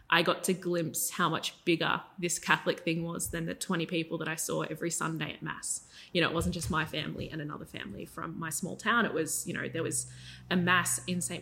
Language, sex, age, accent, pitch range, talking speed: English, female, 20-39, Australian, 160-180 Hz, 240 wpm